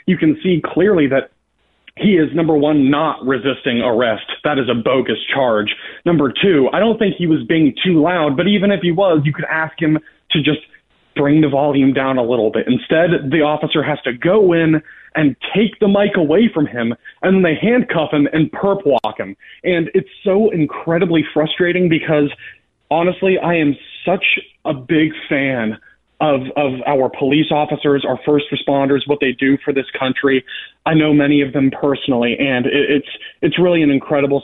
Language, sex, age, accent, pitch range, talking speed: English, male, 30-49, American, 140-170 Hz, 185 wpm